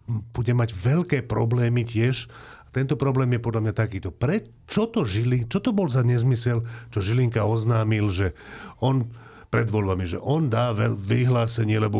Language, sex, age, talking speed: Slovak, male, 40-59, 155 wpm